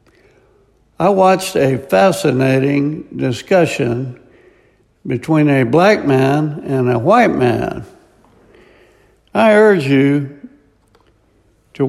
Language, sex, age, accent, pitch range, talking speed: English, male, 60-79, American, 130-165 Hz, 85 wpm